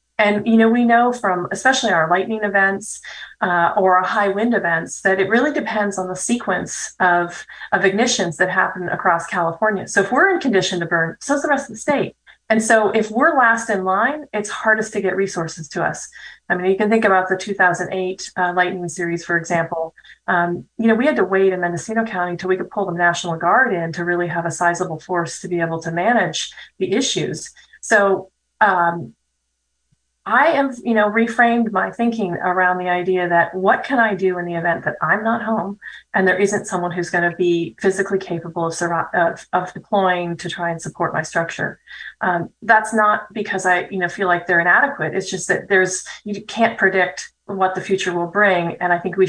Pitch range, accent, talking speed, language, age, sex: 175-210 Hz, American, 210 wpm, English, 30-49, female